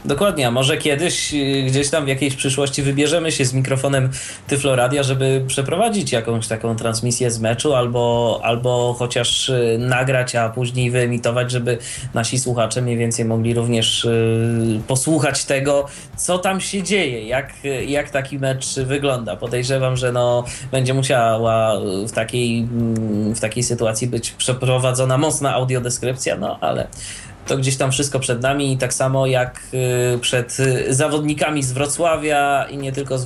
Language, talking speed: Polish, 140 wpm